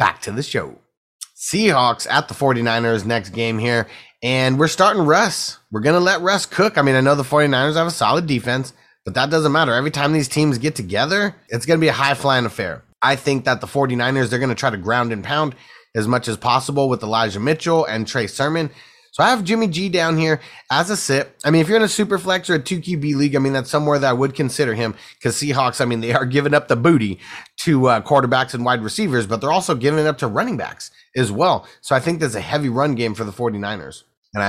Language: English